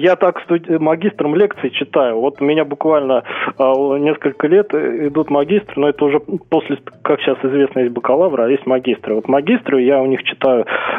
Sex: male